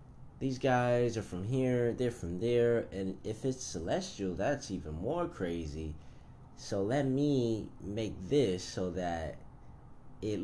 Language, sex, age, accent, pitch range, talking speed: English, male, 20-39, American, 80-110 Hz, 140 wpm